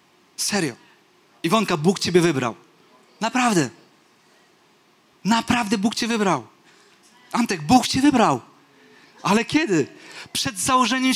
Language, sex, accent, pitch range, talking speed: Polish, male, native, 180-275 Hz, 95 wpm